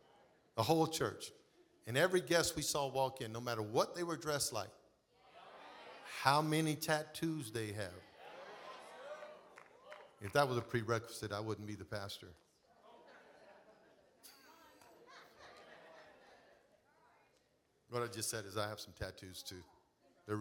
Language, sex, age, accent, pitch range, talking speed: English, male, 50-69, American, 110-155 Hz, 125 wpm